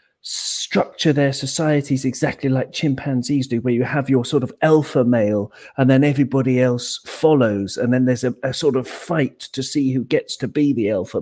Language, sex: English, male